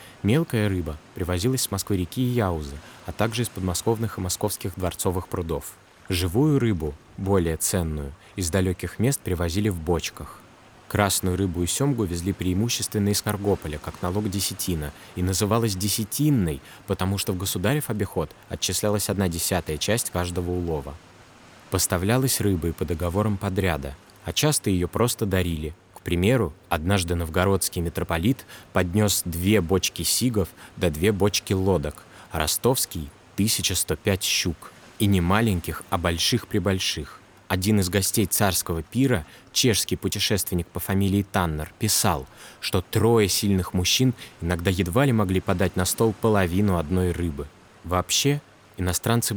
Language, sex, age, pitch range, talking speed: Russian, male, 20-39, 90-105 Hz, 135 wpm